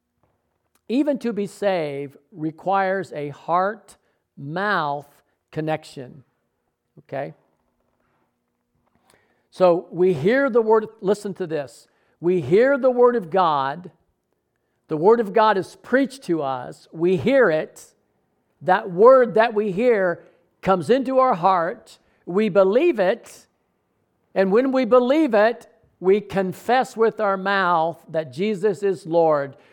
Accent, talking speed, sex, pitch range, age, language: American, 120 wpm, male, 175-230 Hz, 50-69, English